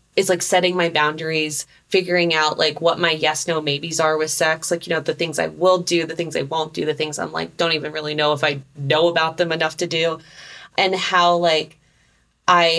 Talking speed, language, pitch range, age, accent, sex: 230 wpm, English, 155-195 Hz, 20-39, American, female